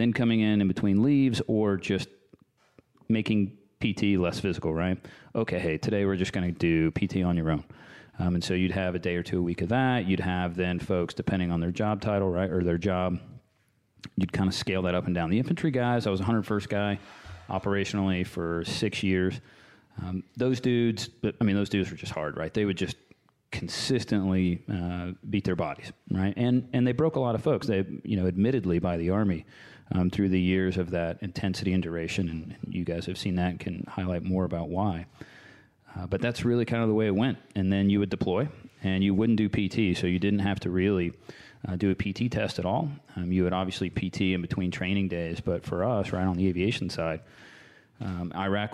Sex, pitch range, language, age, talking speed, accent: male, 90-110 Hz, English, 30-49, 220 wpm, American